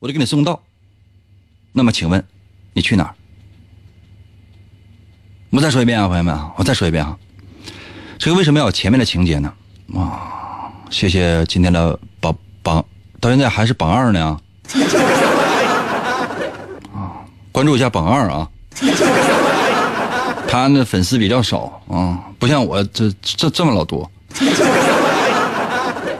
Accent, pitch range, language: native, 95-125 Hz, Chinese